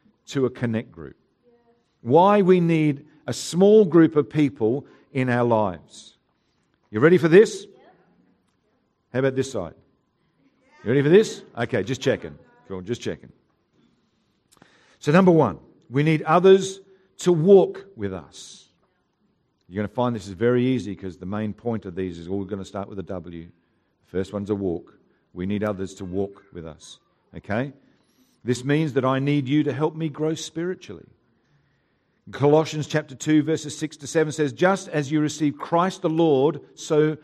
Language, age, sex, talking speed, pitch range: English, 50-69, male, 170 wpm, 105-155 Hz